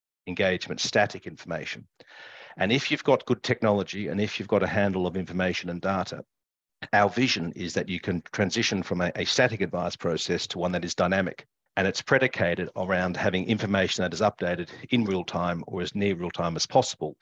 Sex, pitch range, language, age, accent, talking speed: male, 90-110 Hz, English, 50-69, Australian, 195 wpm